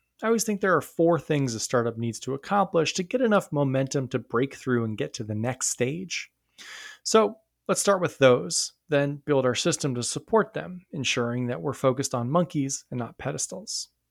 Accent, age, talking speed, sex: American, 30-49, 195 wpm, male